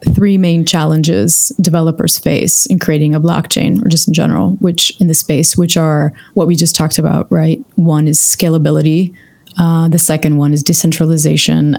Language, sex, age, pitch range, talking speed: English, female, 20-39, 155-185 Hz, 175 wpm